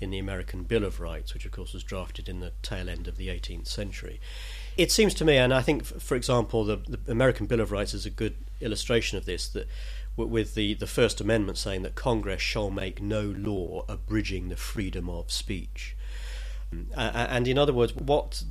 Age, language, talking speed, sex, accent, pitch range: 40-59, English, 205 wpm, male, British, 95-125 Hz